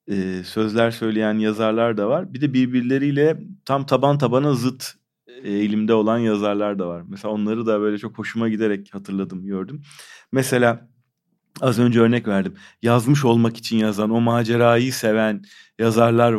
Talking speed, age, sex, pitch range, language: 150 wpm, 40-59, male, 105-135 Hz, Turkish